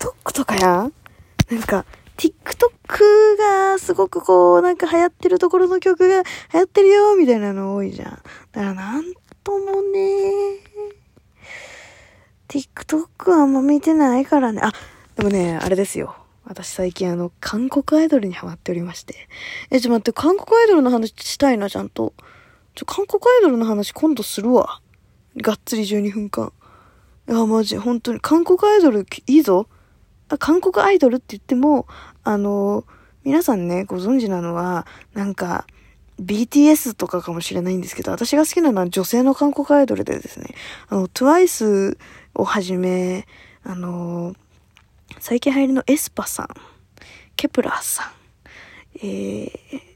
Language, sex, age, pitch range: Japanese, female, 20-39, 190-310 Hz